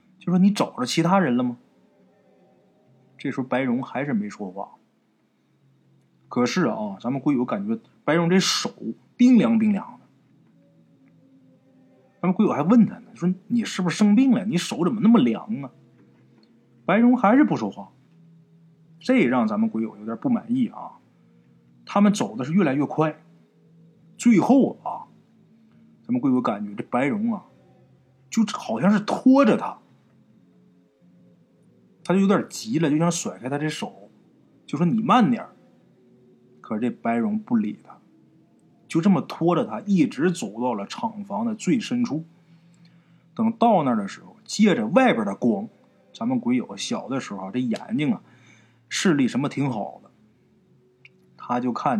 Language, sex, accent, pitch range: Chinese, male, native, 145-230 Hz